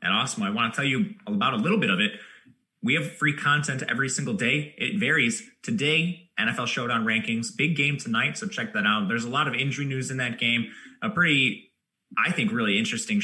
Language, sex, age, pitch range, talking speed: English, male, 20-39, 135-215 Hz, 220 wpm